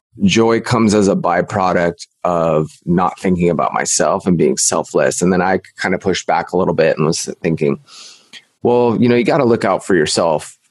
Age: 20-39